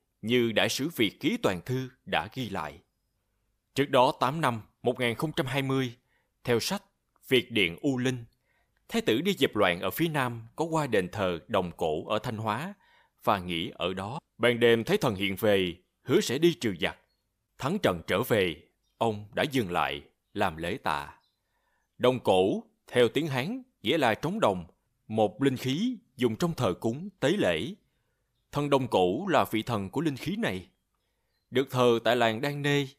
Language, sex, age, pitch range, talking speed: Vietnamese, male, 20-39, 110-145 Hz, 180 wpm